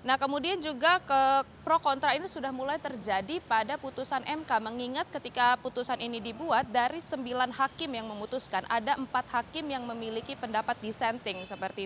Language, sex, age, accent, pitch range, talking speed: Indonesian, female, 20-39, native, 225-275 Hz, 155 wpm